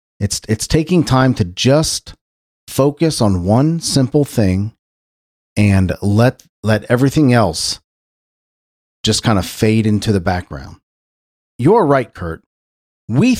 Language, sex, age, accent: English, male, 40-59, American